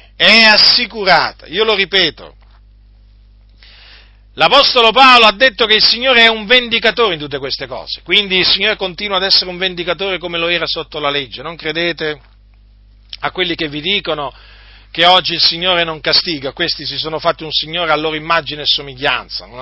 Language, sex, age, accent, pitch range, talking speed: Italian, male, 40-59, native, 135-185 Hz, 175 wpm